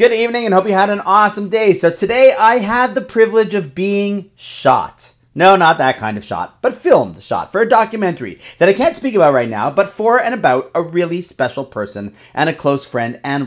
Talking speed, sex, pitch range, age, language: 225 wpm, male, 130-195 Hz, 40-59, English